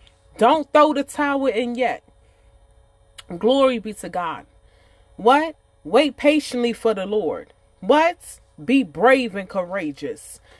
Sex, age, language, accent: female, 30-49, English, American